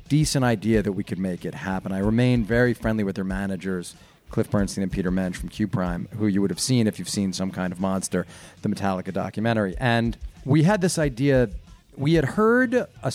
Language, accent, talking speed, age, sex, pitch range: English, American, 215 wpm, 40-59, male, 100-135 Hz